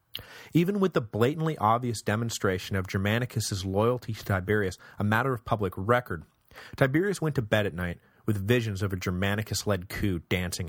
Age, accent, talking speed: 30-49, American, 165 wpm